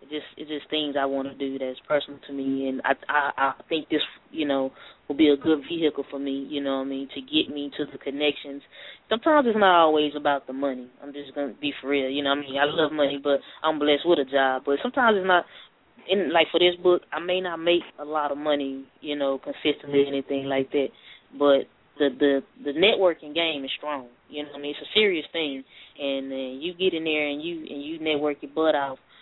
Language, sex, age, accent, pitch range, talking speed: English, female, 20-39, American, 140-165 Hz, 250 wpm